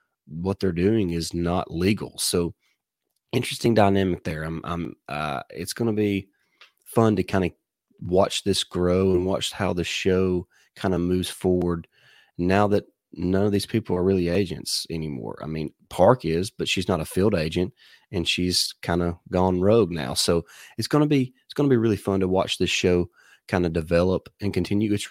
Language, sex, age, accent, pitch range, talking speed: English, male, 30-49, American, 90-105 Hz, 195 wpm